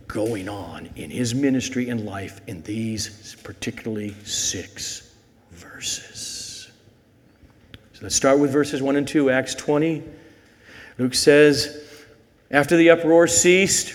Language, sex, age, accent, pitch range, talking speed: English, male, 50-69, American, 110-145 Hz, 120 wpm